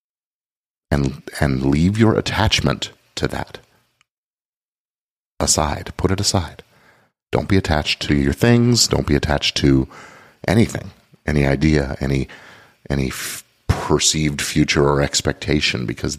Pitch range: 70-95 Hz